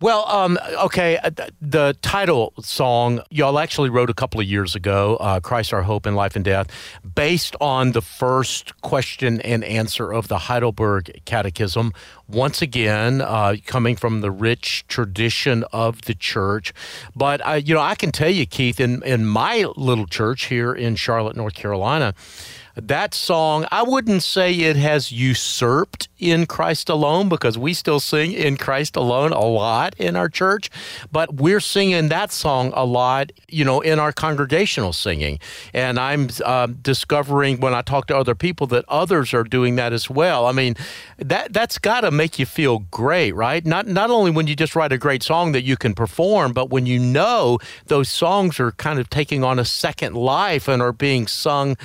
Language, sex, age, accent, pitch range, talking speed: English, male, 40-59, American, 115-155 Hz, 185 wpm